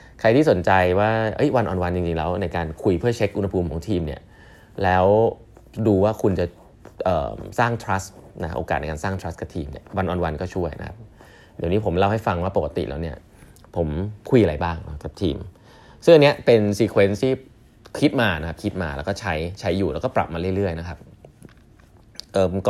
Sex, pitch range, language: male, 85-105 Hz, Thai